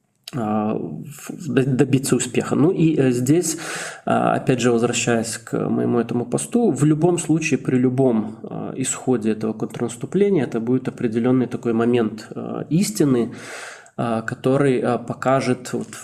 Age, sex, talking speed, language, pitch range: 20-39, male, 105 wpm, Russian, 115-135 Hz